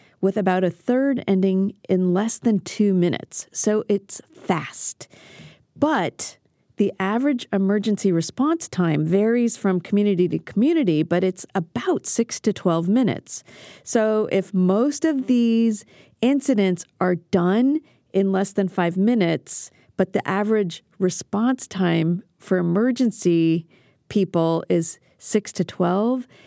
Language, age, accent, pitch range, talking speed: English, 40-59, American, 180-225 Hz, 125 wpm